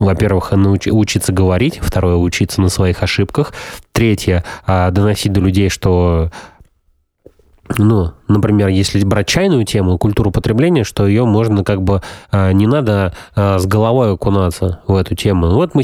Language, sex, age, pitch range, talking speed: Russian, male, 20-39, 90-105 Hz, 135 wpm